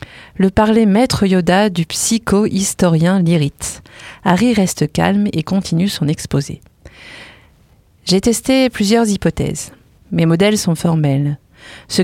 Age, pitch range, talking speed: 40-59, 165-215 Hz, 115 wpm